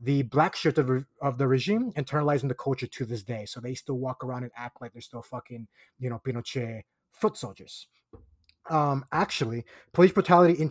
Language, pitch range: English, 130-155 Hz